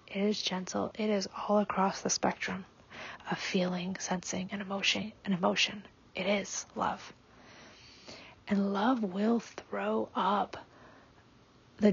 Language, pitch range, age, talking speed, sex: English, 190-215 Hz, 30-49, 125 wpm, female